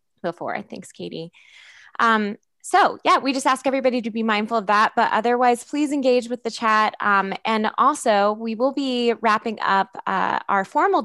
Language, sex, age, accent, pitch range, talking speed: English, female, 20-39, American, 190-245 Hz, 180 wpm